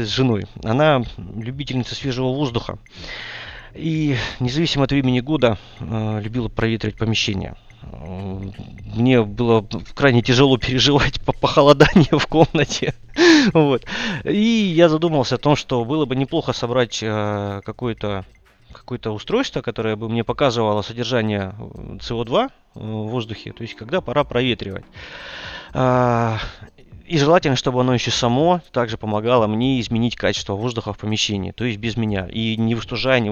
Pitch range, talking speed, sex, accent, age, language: 110-135 Hz, 135 wpm, male, native, 30-49, Russian